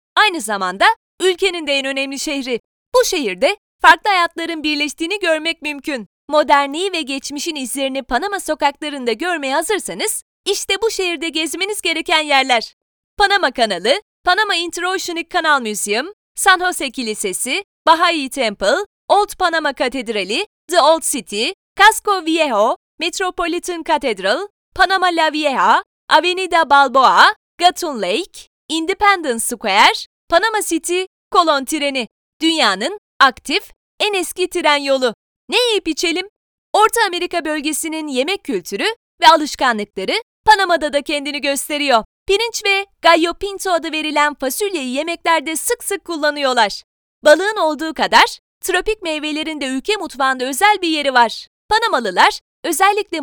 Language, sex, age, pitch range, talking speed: Turkish, female, 30-49, 285-385 Hz, 120 wpm